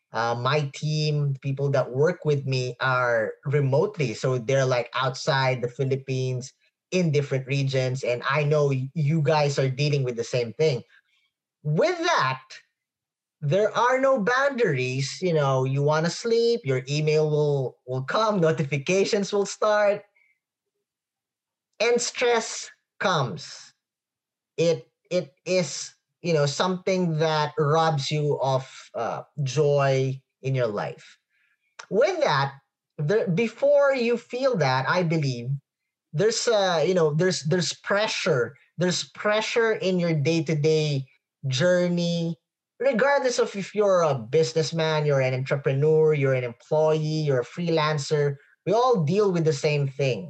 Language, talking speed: English, 130 wpm